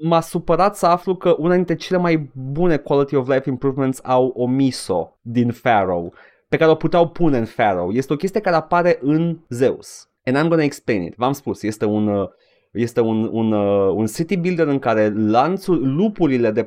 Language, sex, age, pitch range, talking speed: Romanian, male, 30-49, 120-165 Hz, 185 wpm